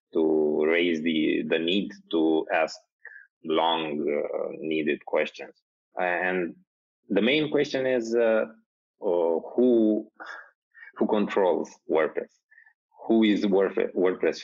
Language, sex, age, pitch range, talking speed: English, male, 20-39, 75-110 Hz, 105 wpm